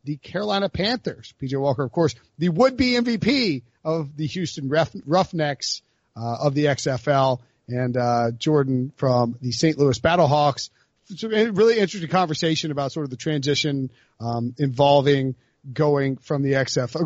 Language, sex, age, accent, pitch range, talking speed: English, male, 40-59, American, 140-190 Hz, 140 wpm